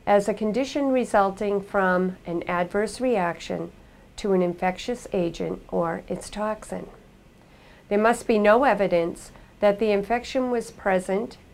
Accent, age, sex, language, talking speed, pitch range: American, 50-69, female, English, 130 wpm, 175-215 Hz